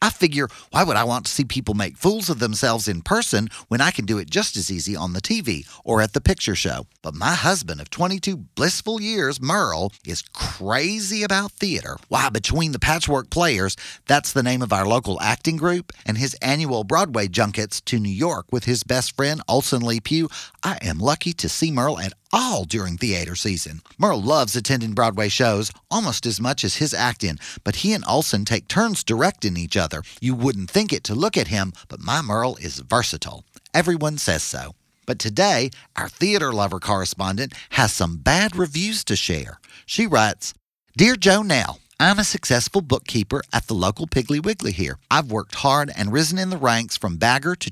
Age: 40-59